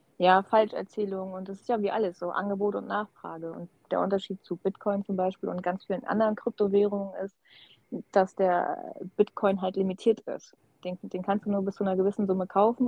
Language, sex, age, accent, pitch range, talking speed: German, female, 30-49, German, 185-215 Hz, 195 wpm